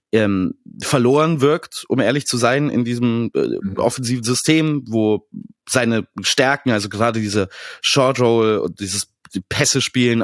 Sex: male